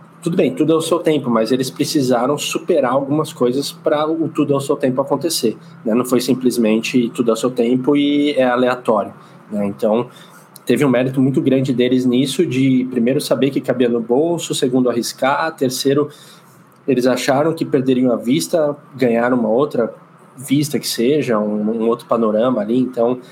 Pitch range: 125-165 Hz